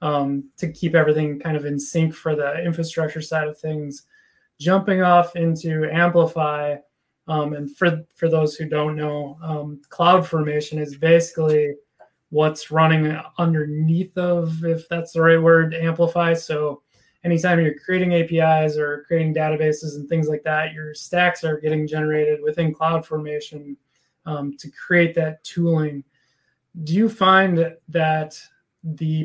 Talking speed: 140 wpm